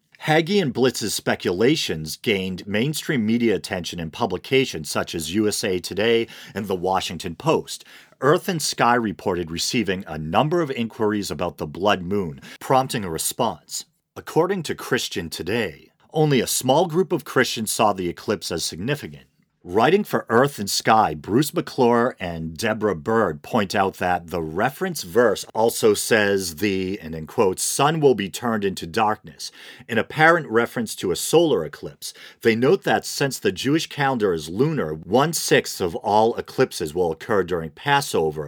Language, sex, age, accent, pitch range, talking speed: English, male, 40-59, American, 85-130 Hz, 155 wpm